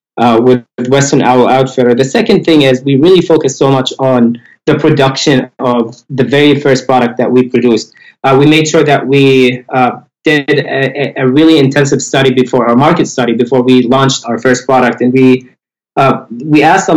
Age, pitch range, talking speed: 20-39, 125-145 Hz, 190 wpm